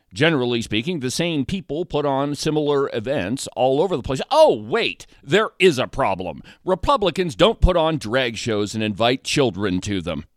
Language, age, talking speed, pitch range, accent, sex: English, 40-59, 175 wpm, 110-155 Hz, American, male